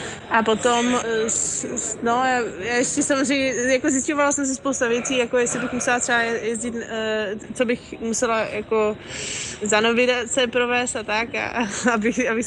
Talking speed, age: 145 wpm, 20-39